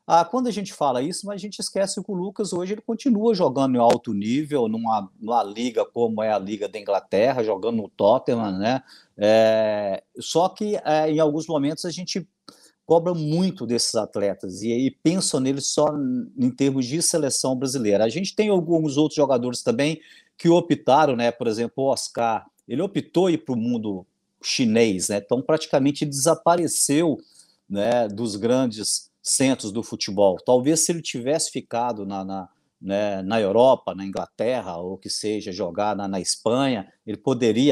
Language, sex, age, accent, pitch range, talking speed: Portuguese, male, 50-69, Brazilian, 110-165 Hz, 170 wpm